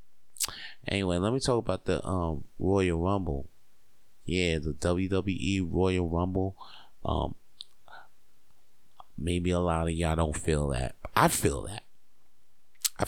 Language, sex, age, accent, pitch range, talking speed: English, male, 30-49, American, 80-95 Hz, 125 wpm